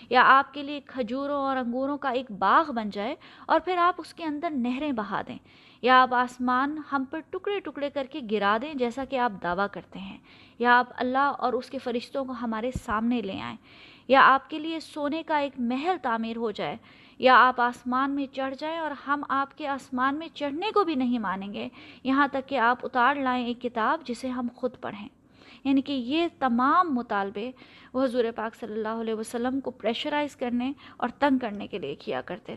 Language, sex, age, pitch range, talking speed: Urdu, female, 20-39, 240-285 Hz, 210 wpm